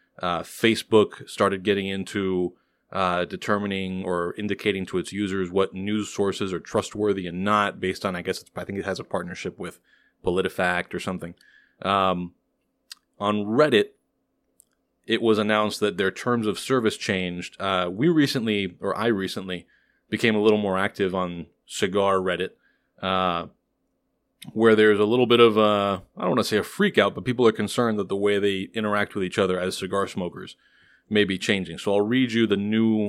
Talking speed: 180 wpm